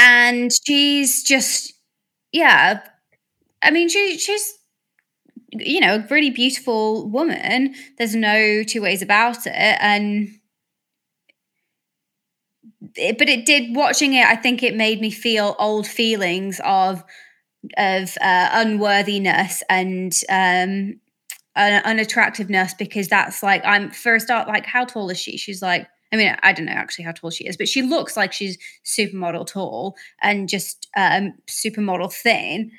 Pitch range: 195-245 Hz